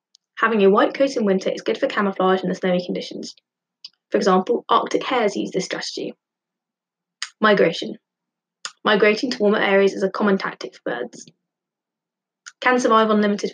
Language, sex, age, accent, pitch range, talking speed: English, female, 20-39, British, 185-220 Hz, 160 wpm